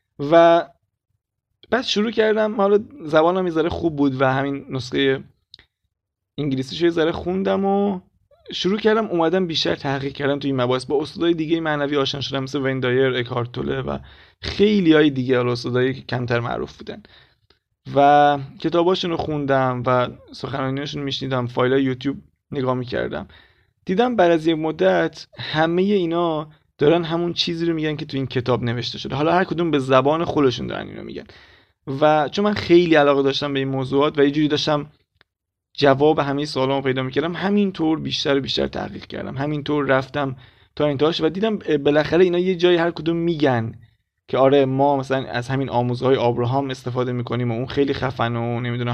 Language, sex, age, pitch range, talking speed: Persian, male, 30-49, 125-165 Hz, 170 wpm